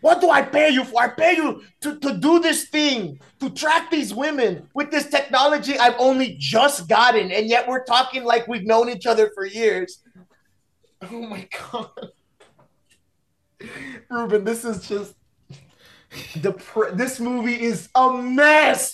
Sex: male